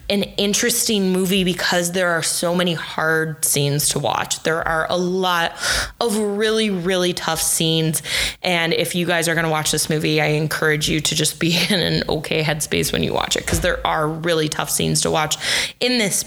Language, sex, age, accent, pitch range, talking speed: English, female, 20-39, American, 165-185 Hz, 205 wpm